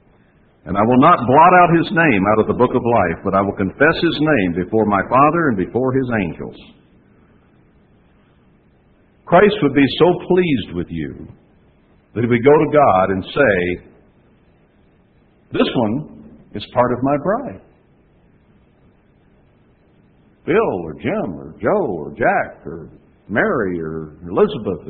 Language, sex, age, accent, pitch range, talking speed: English, male, 60-79, American, 95-155 Hz, 145 wpm